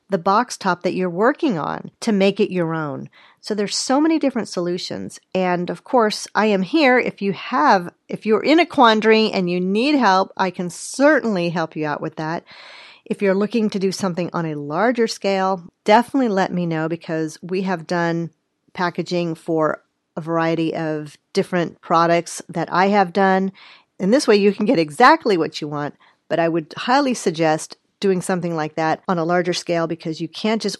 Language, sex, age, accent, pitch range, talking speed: English, female, 40-59, American, 165-215 Hz, 195 wpm